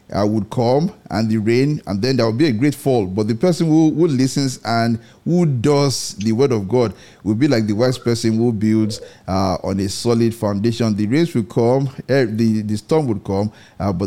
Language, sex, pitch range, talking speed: English, male, 105-135 Hz, 220 wpm